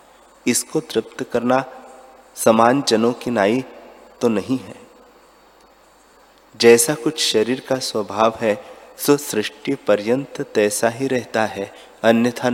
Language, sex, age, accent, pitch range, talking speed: Hindi, male, 30-49, native, 100-125 Hz, 110 wpm